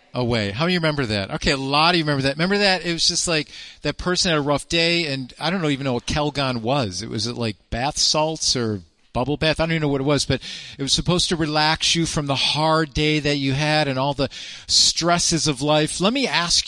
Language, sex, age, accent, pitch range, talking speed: English, male, 40-59, American, 115-165 Hz, 255 wpm